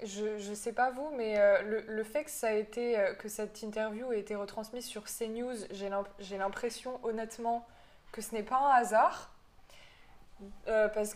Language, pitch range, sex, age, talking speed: French, 200-230 Hz, female, 20-39, 195 wpm